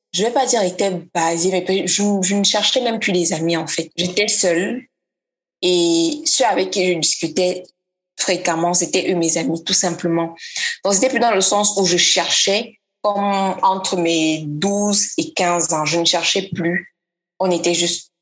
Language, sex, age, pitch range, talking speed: French, female, 20-39, 175-210 Hz, 180 wpm